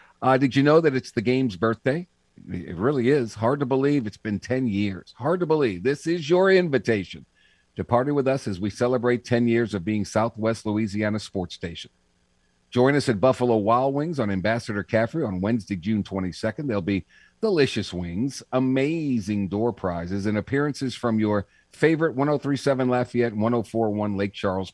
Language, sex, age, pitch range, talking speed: English, male, 50-69, 100-135 Hz, 170 wpm